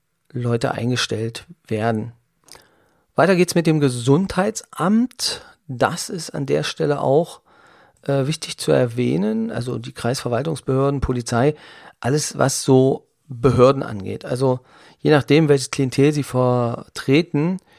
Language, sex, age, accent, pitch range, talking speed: German, male, 40-59, German, 120-140 Hz, 115 wpm